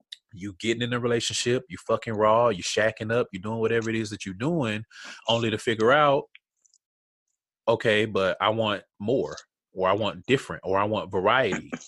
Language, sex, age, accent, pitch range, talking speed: English, male, 20-39, American, 100-125 Hz, 180 wpm